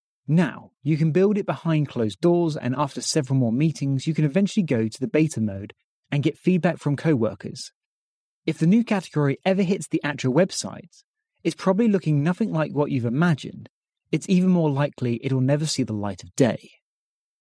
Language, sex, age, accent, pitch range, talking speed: English, male, 30-49, British, 135-185 Hz, 185 wpm